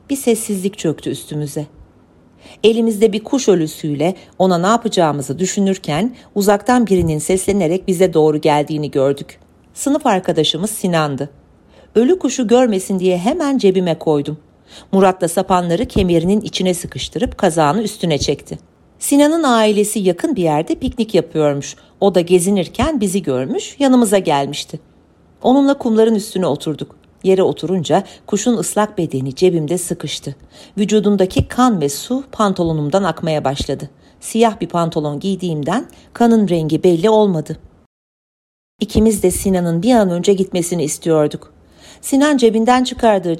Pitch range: 165-225 Hz